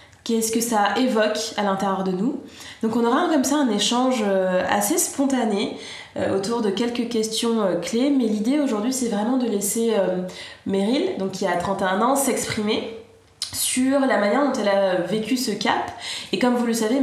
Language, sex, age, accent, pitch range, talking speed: French, female, 20-39, French, 205-255 Hz, 175 wpm